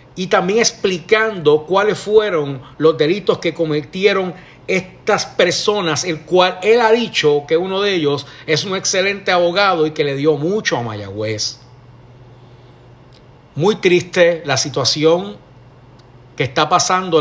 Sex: male